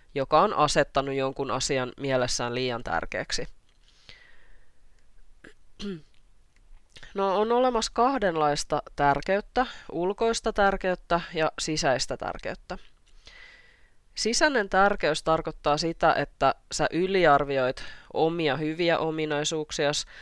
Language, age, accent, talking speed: Finnish, 20-39, native, 85 wpm